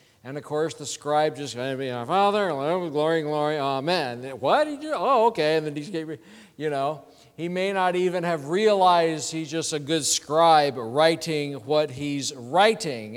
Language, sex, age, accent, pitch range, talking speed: English, male, 50-69, American, 150-195 Hz, 175 wpm